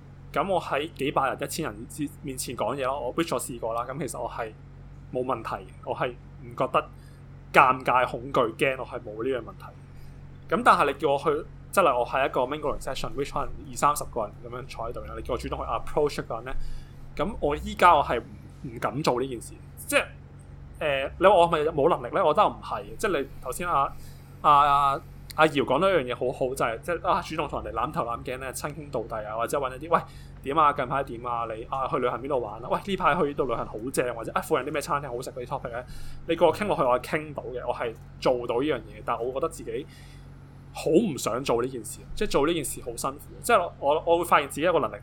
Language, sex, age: Chinese, male, 20-39